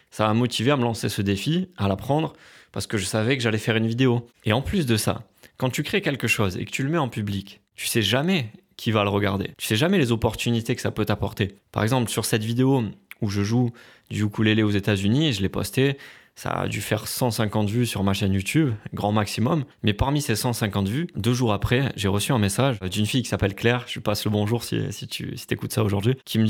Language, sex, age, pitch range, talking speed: French, male, 20-39, 105-130 Hz, 255 wpm